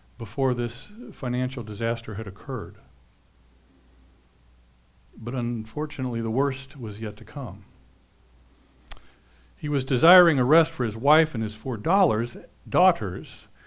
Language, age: English, 50-69